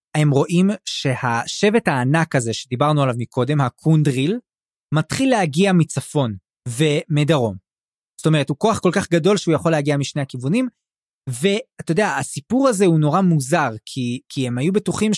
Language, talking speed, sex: Hebrew, 145 wpm, male